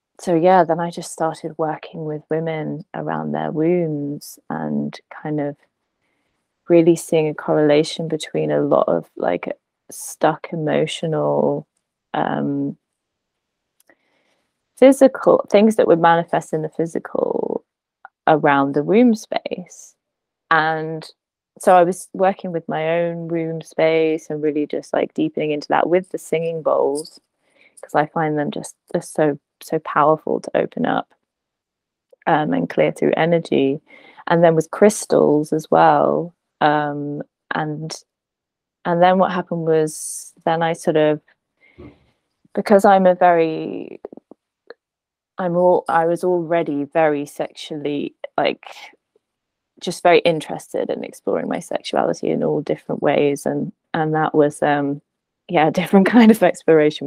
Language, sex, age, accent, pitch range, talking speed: English, female, 20-39, British, 150-180 Hz, 135 wpm